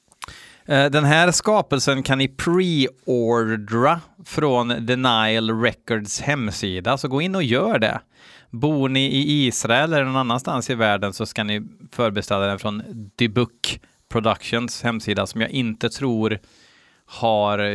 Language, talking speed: Swedish, 130 wpm